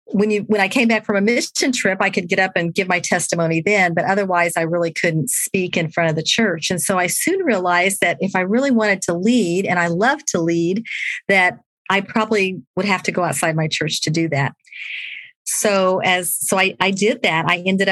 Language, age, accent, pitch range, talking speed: English, 50-69, American, 175-215 Hz, 230 wpm